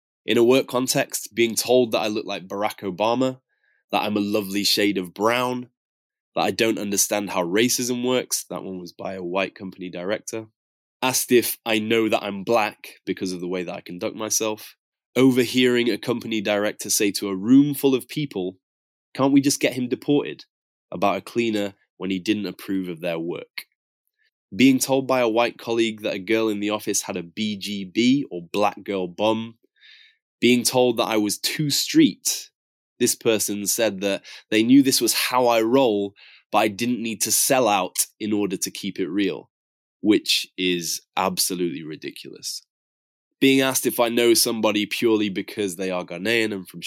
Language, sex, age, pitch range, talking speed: English, male, 20-39, 95-125 Hz, 185 wpm